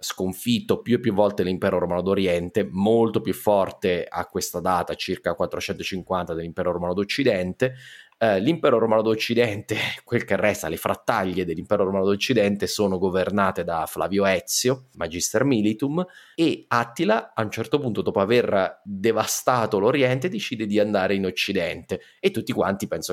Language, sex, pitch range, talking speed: Italian, male, 95-120 Hz, 150 wpm